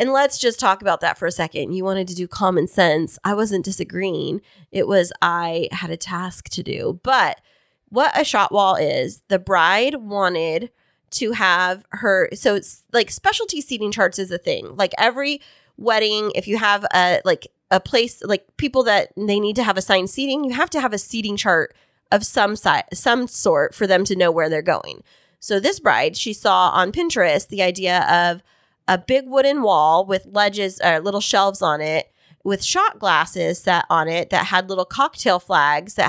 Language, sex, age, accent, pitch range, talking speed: English, female, 20-39, American, 180-240 Hz, 195 wpm